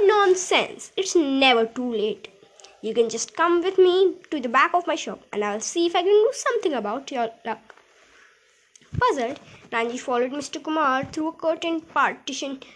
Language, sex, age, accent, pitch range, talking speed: Hindi, female, 20-39, native, 240-330 Hz, 175 wpm